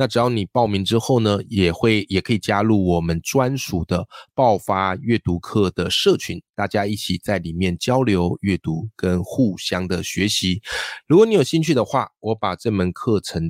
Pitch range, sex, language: 95-130 Hz, male, Chinese